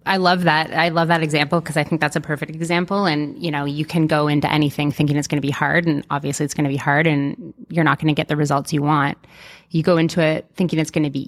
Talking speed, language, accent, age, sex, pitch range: 285 wpm, English, American, 30-49, female, 150-175 Hz